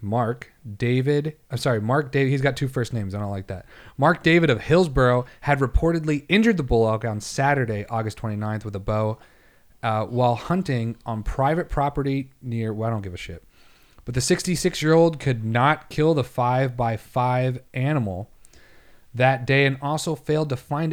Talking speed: 175 wpm